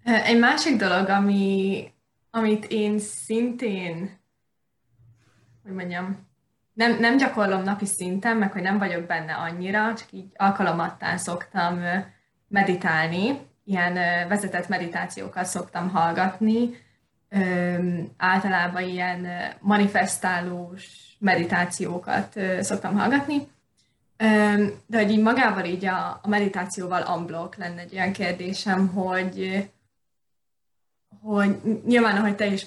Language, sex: Hungarian, female